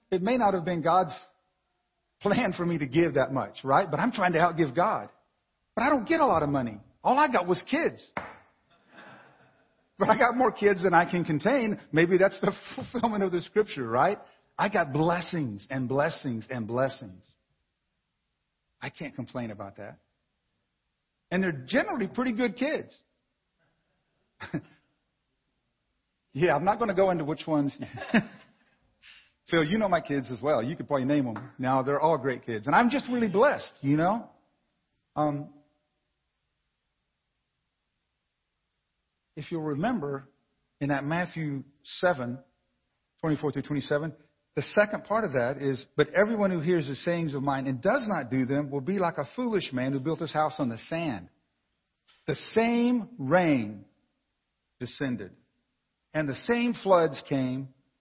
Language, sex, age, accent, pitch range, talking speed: English, male, 50-69, American, 135-195 Hz, 160 wpm